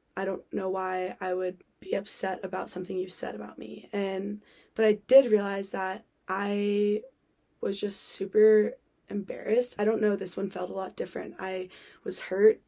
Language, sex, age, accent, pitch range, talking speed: English, female, 20-39, American, 190-215 Hz, 175 wpm